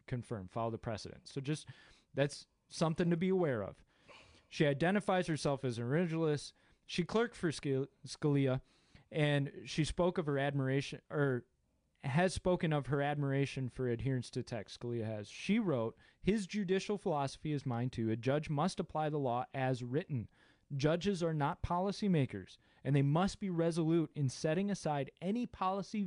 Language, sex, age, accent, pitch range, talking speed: English, male, 20-39, American, 135-175 Hz, 160 wpm